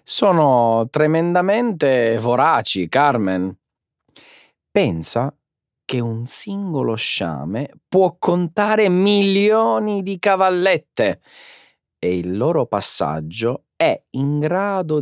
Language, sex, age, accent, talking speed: Italian, male, 40-59, native, 85 wpm